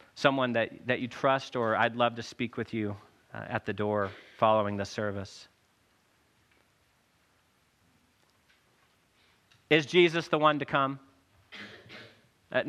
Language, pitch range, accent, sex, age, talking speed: English, 110-150 Hz, American, male, 40-59, 125 wpm